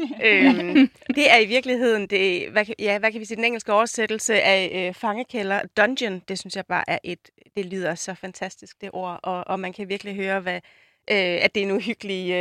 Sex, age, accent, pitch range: female, 30-49, native, 190-230 Hz